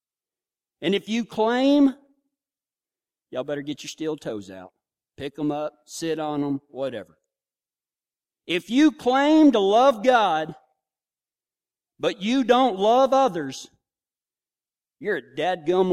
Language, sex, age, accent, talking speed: English, male, 40-59, American, 120 wpm